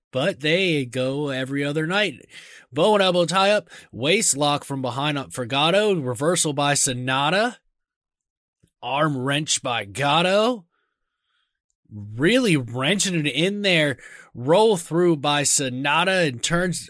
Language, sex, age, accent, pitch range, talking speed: English, male, 20-39, American, 140-190 Hz, 130 wpm